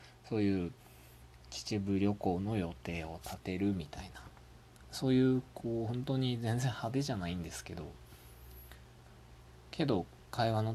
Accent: native